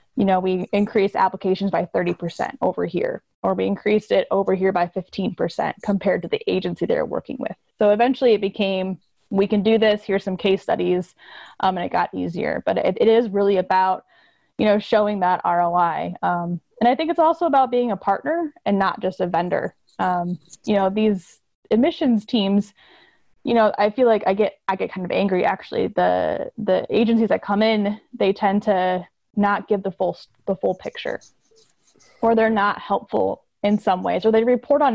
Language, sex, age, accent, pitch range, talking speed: English, female, 10-29, American, 190-225 Hz, 195 wpm